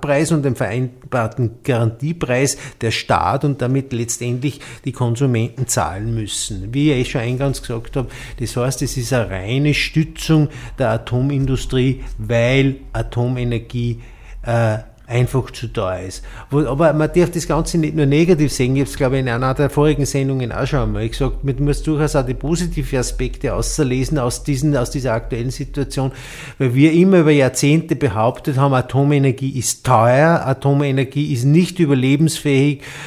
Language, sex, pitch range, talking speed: German, male, 120-145 Hz, 160 wpm